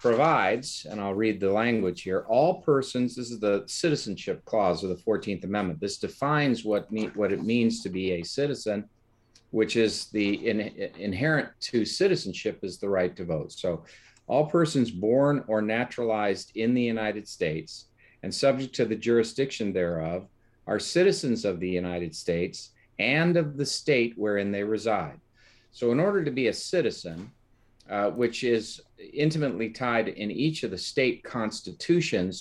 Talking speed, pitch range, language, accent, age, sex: 165 wpm, 100-125 Hz, English, American, 50-69, male